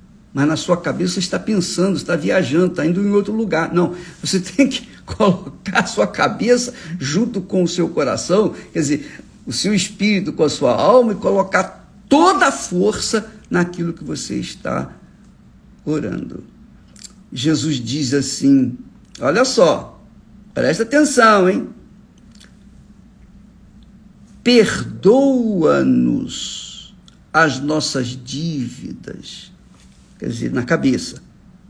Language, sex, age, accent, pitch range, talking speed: Portuguese, male, 50-69, Brazilian, 165-225 Hz, 115 wpm